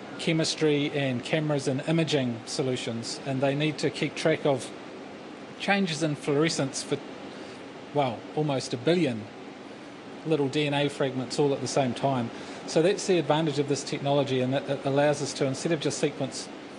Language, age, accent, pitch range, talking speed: English, 40-59, Australian, 135-155 Hz, 160 wpm